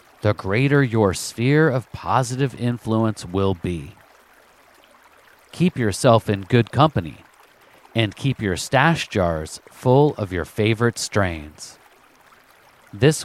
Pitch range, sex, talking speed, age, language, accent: 95-135 Hz, male, 115 wpm, 40-59, English, American